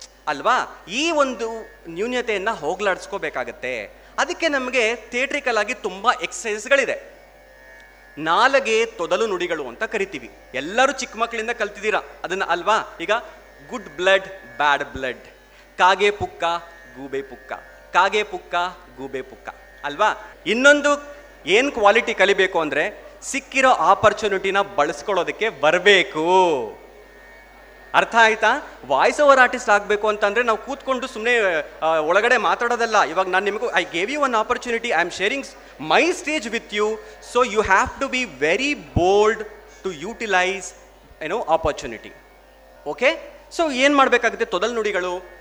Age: 30-49